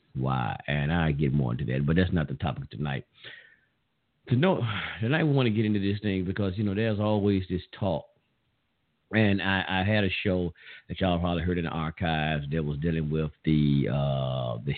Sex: male